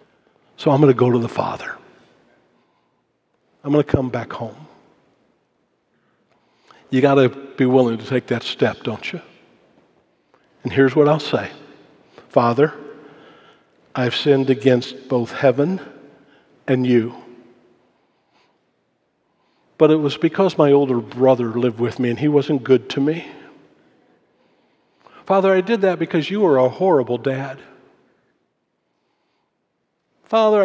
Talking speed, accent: 125 wpm, American